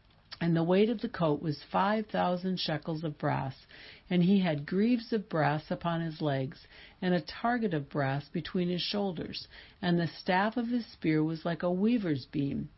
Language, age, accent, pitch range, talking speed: English, 60-79, American, 150-200 Hz, 190 wpm